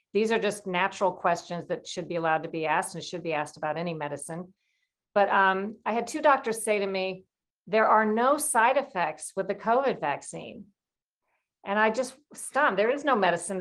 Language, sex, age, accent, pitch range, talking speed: English, female, 50-69, American, 180-230 Hz, 200 wpm